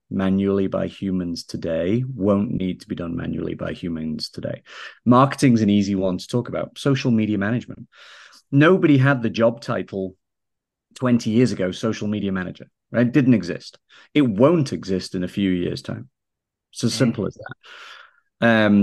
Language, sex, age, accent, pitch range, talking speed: English, male, 30-49, British, 95-120 Hz, 165 wpm